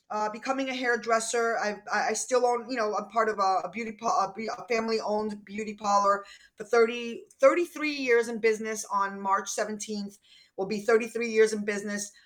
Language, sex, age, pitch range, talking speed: English, female, 20-39, 215-255 Hz, 165 wpm